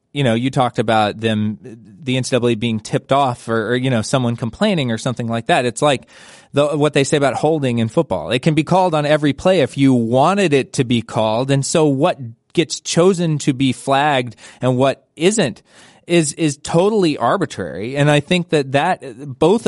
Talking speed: 200 wpm